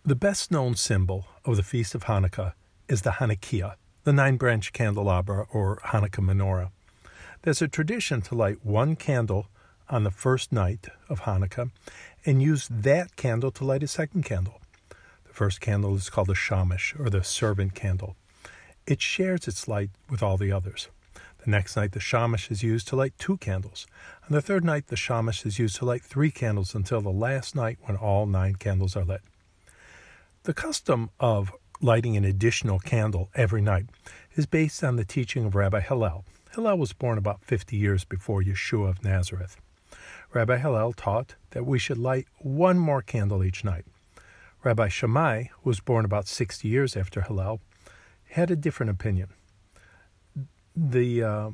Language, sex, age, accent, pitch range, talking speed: English, male, 50-69, American, 95-135 Hz, 170 wpm